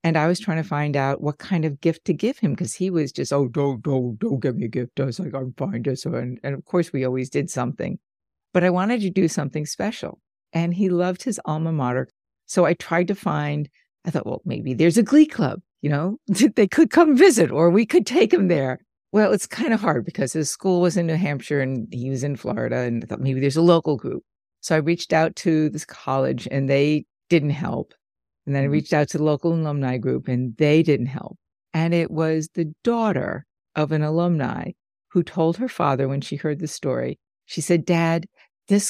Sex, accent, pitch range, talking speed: female, American, 145-185 Hz, 230 wpm